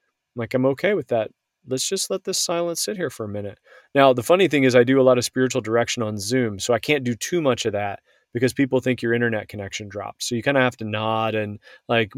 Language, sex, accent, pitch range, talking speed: English, male, American, 105-130 Hz, 260 wpm